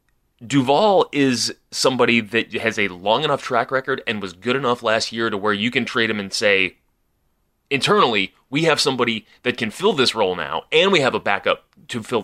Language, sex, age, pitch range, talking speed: English, male, 20-39, 105-130 Hz, 200 wpm